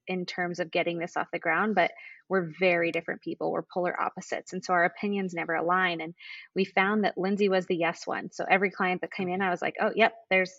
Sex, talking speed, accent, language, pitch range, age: female, 245 wpm, American, English, 180-220 Hz, 20-39